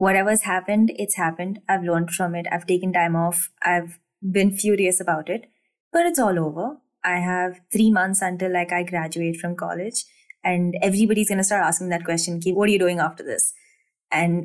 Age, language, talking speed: 20-39, Hindi, 200 wpm